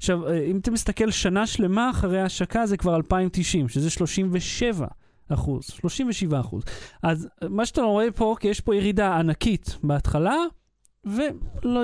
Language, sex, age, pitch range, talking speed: Hebrew, male, 30-49, 150-205 Hz, 140 wpm